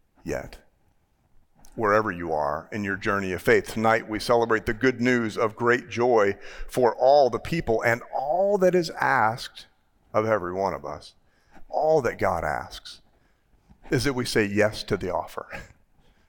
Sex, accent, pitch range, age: male, American, 100-120 Hz, 40-59